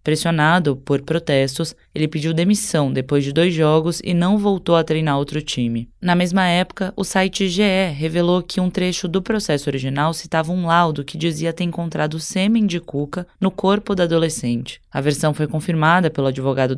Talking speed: 180 wpm